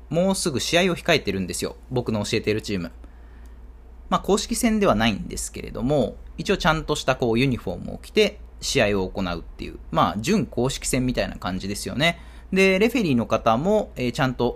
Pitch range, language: 100-160 Hz, Japanese